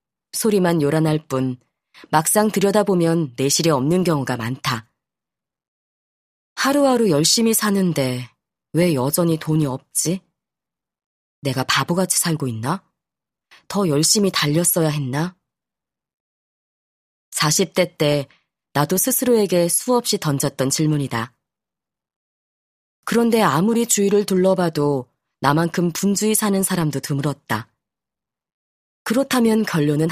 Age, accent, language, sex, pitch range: 20-39, native, Korean, female, 145-200 Hz